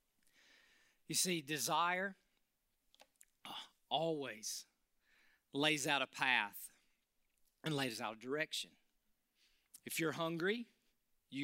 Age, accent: 40-59, American